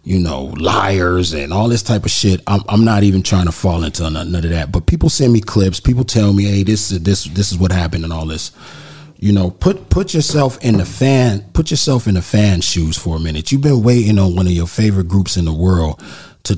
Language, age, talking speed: English, 30-49, 250 wpm